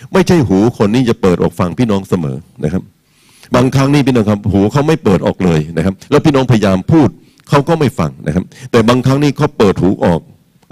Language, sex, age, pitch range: Thai, male, 60-79, 105-150 Hz